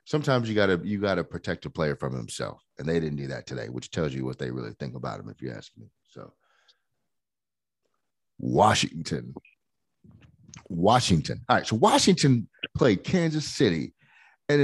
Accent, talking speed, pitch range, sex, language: American, 165 wpm, 85-125 Hz, male, English